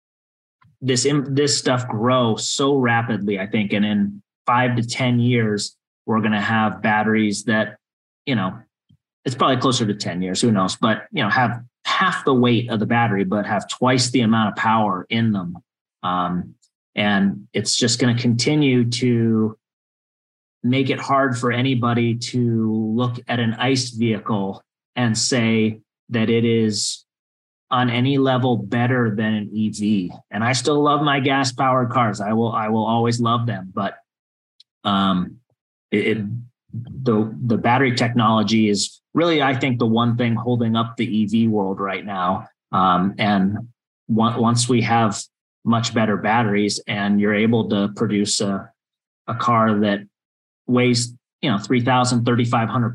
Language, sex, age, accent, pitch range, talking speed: English, male, 30-49, American, 105-125 Hz, 165 wpm